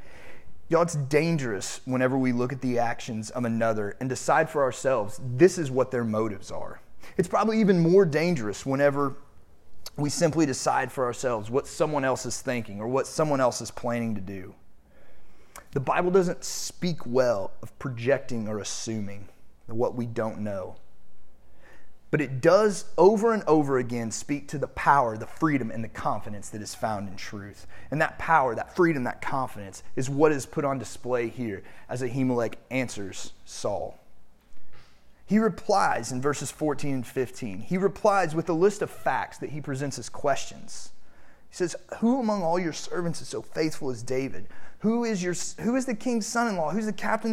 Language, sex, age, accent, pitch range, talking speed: English, male, 30-49, American, 120-185 Hz, 175 wpm